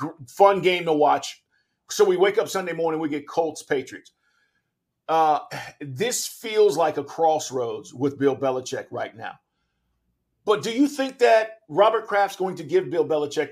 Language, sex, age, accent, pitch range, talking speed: English, male, 50-69, American, 160-225 Hz, 165 wpm